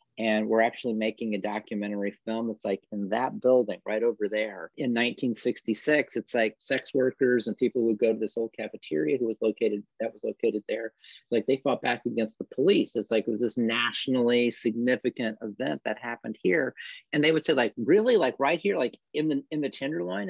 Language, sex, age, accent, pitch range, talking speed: English, male, 40-59, American, 105-125 Hz, 205 wpm